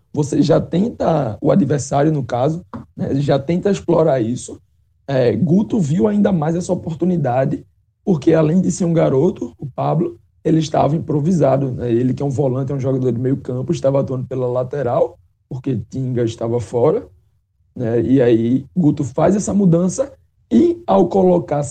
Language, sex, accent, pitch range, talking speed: Portuguese, male, Brazilian, 130-175 Hz, 165 wpm